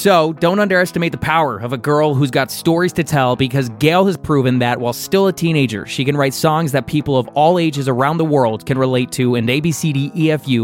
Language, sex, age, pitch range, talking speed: English, male, 20-39, 125-170 Hz, 220 wpm